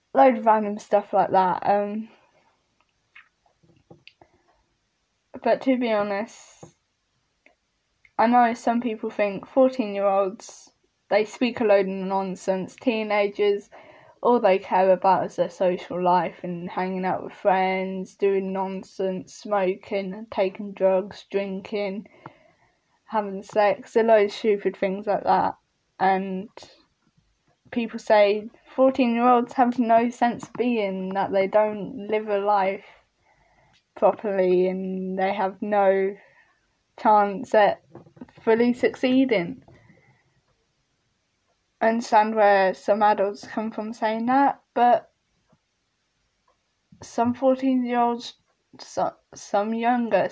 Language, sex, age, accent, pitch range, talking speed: English, female, 10-29, British, 190-230 Hz, 105 wpm